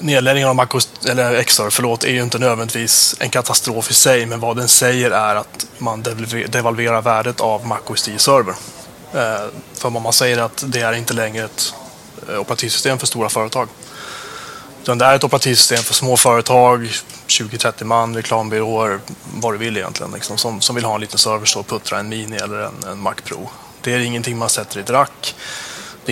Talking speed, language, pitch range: 185 wpm, Swedish, 110-125 Hz